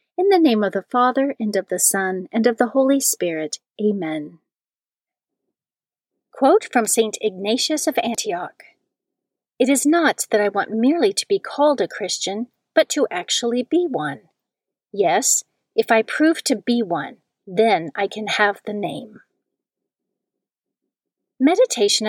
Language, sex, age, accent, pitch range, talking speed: English, female, 40-59, American, 205-270 Hz, 145 wpm